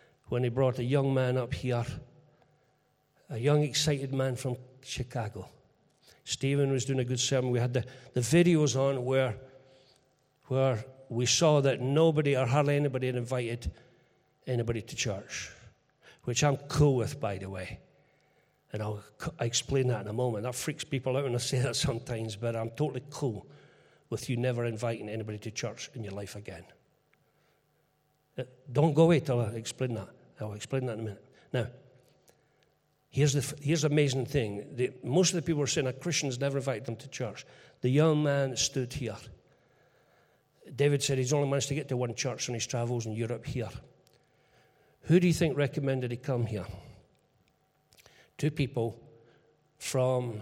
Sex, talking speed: male, 170 wpm